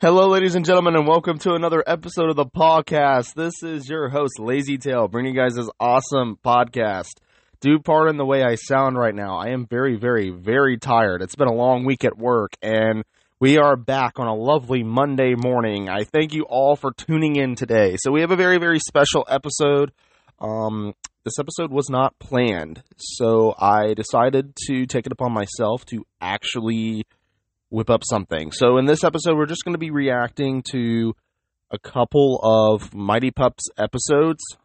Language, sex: English, male